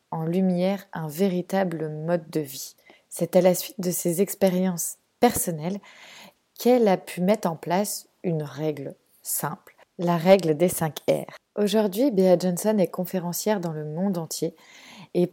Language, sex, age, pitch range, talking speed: French, female, 20-39, 170-205 Hz, 155 wpm